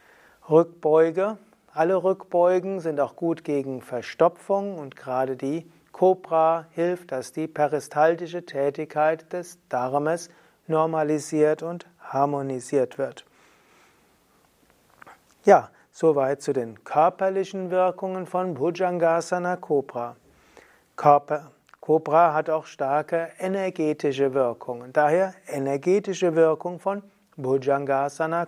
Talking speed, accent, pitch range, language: 90 wpm, German, 145-180 Hz, German